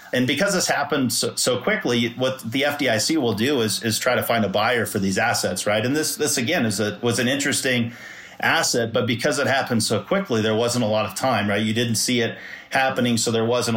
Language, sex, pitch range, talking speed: English, male, 105-120 Hz, 235 wpm